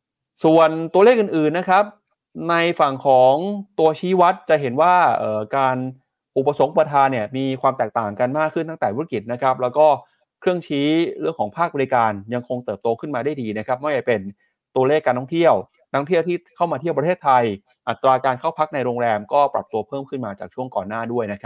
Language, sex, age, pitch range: Thai, male, 20-39, 115-150 Hz